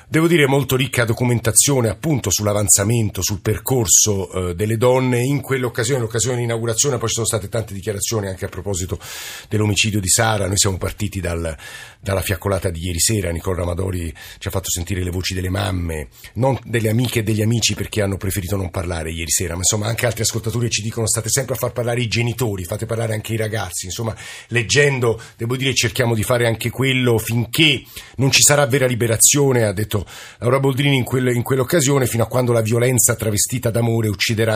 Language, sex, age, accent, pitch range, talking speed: Italian, male, 50-69, native, 100-120 Hz, 190 wpm